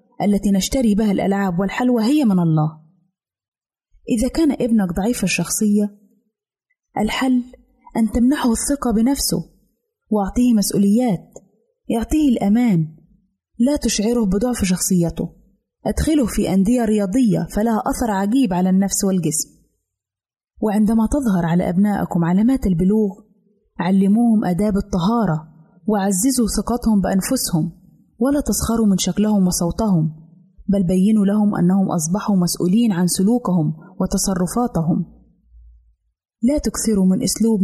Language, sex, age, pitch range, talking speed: Arabic, female, 20-39, 185-230 Hz, 105 wpm